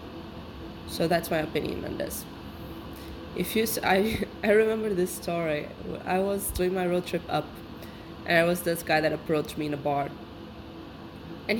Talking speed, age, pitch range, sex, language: 170 wpm, 20-39, 155-185 Hz, female, English